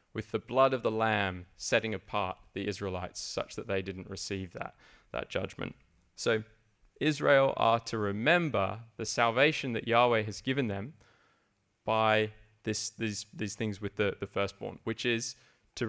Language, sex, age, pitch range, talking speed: English, male, 20-39, 105-130 Hz, 160 wpm